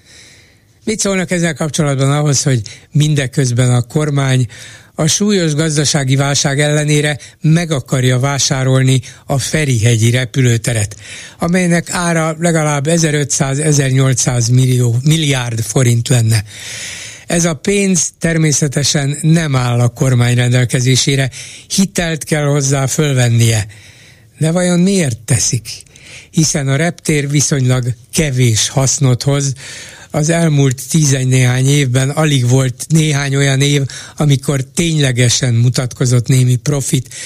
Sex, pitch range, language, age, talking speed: male, 125-160 Hz, Hungarian, 60-79, 105 wpm